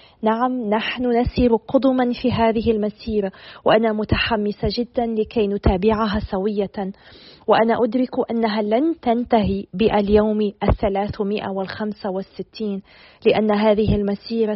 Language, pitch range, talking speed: Arabic, 205-225 Hz, 95 wpm